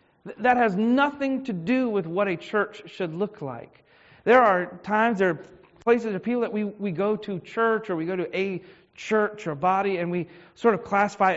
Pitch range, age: 180-225 Hz, 40-59